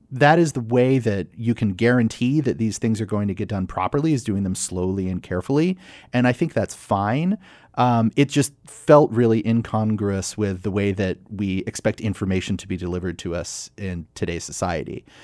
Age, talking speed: 30-49, 195 wpm